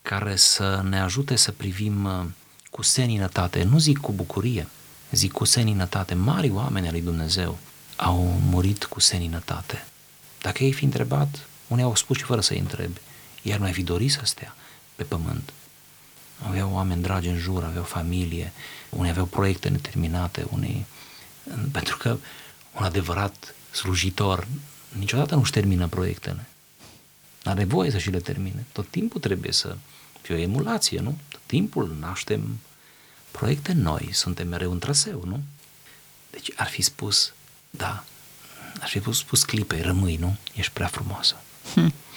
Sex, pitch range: male, 90-135 Hz